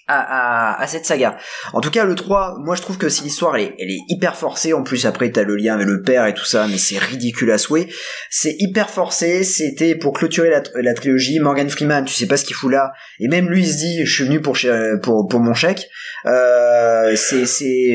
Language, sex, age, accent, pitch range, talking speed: French, male, 20-39, French, 120-160 Hz, 245 wpm